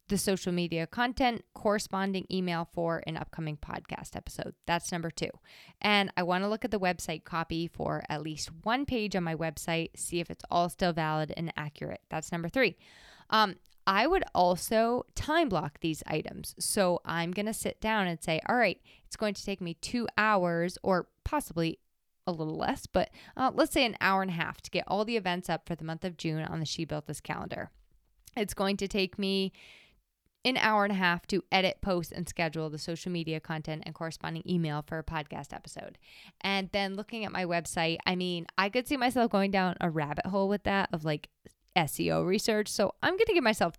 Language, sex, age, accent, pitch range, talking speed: English, female, 20-39, American, 165-210 Hz, 210 wpm